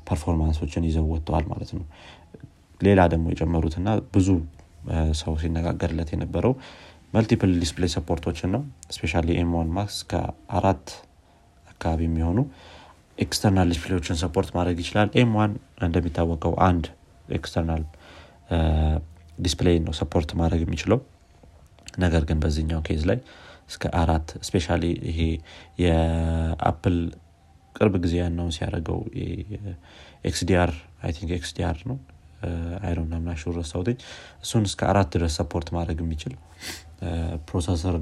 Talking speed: 105 wpm